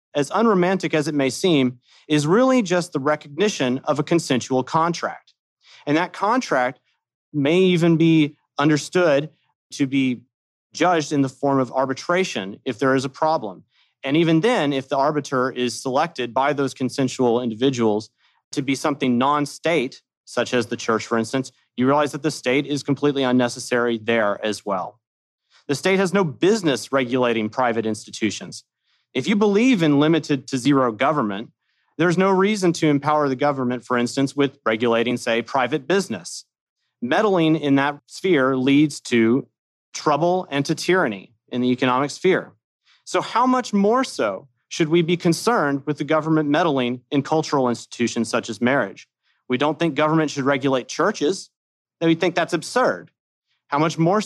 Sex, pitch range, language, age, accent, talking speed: male, 125-160 Hz, English, 30-49, American, 160 wpm